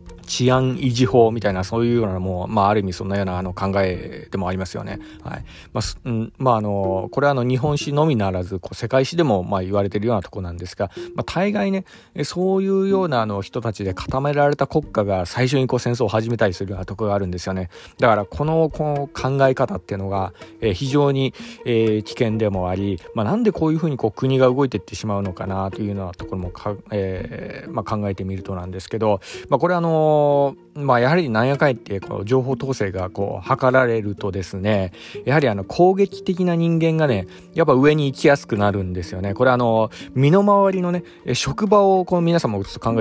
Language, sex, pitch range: Japanese, male, 100-145 Hz